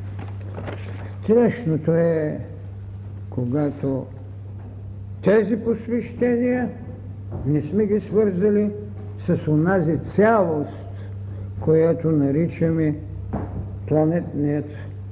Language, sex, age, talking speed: Bulgarian, male, 60-79, 60 wpm